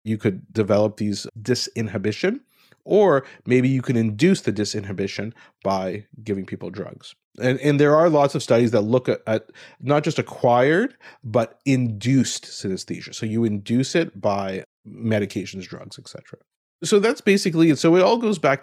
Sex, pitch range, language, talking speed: male, 105-135 Hz, English, 160 wpm